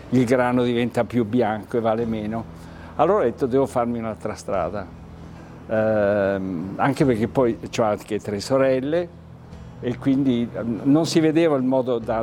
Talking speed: 155 wpm